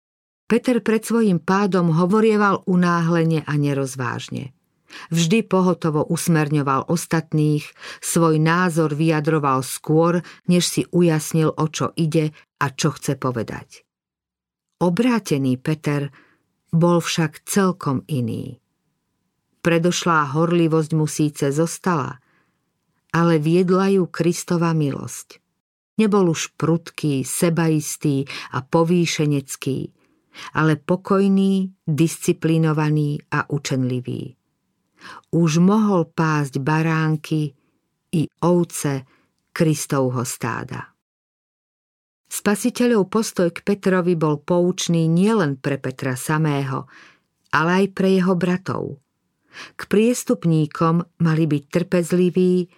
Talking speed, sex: 90 wpm, female